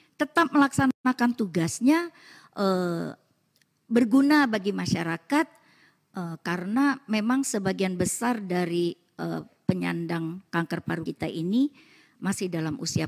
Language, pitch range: Indonesian, 190-300 Hz